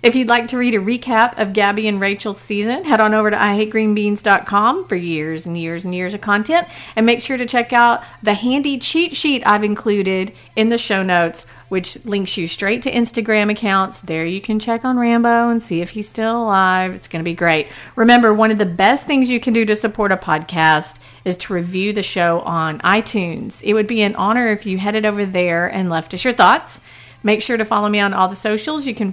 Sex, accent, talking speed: female, American, 230 wpm